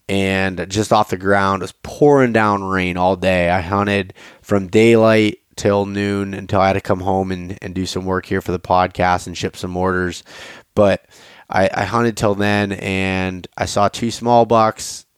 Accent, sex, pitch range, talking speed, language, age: American, male, 95-105 Hz, 195 wpm, English, 20-39